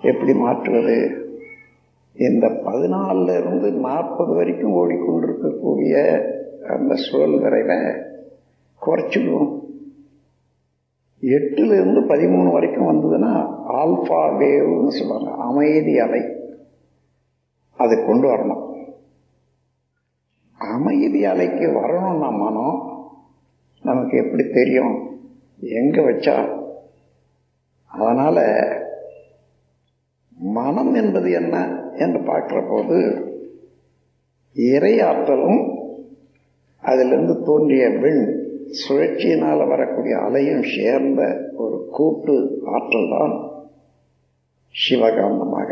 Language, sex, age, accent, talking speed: Tamil, male, 50-69, native, 65 wpm